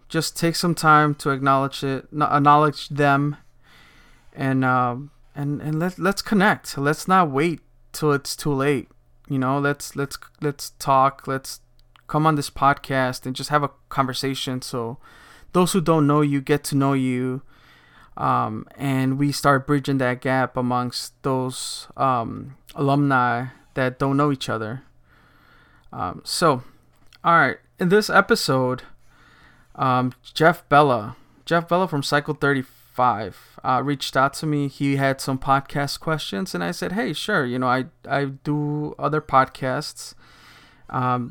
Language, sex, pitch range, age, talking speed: English, male, 130-150 Hz, 20-39, 150 wpm